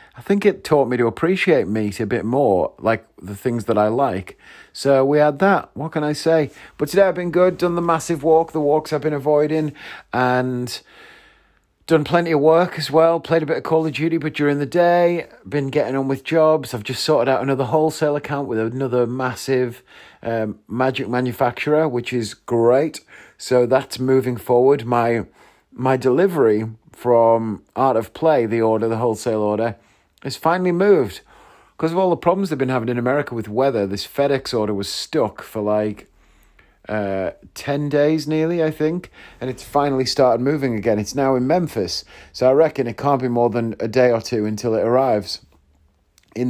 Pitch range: 115-155 Hz